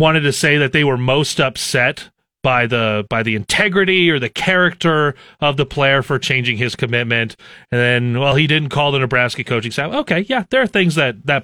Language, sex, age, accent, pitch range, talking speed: English, male, 30-49, American, 130-170 Hz, 210 wpm